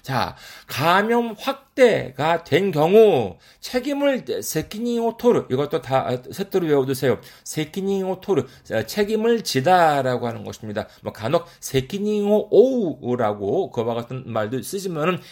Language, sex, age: Korean, male, 40-59